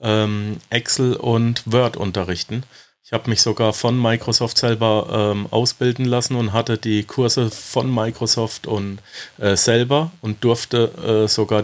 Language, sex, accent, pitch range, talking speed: German, male, German, 100-120 Hz, 140 wpm